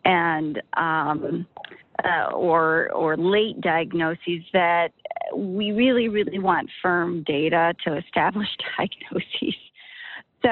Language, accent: English, American